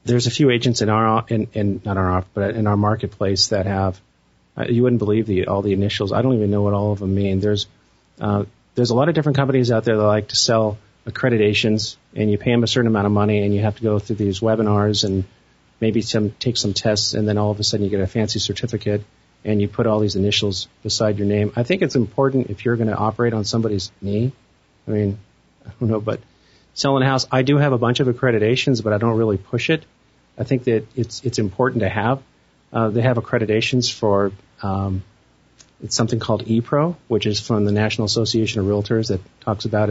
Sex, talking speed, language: male, 230 wpm, English